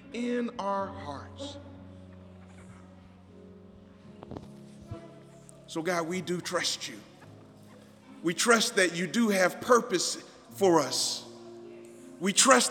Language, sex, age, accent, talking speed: English, male, 40-59, American, 95 wpm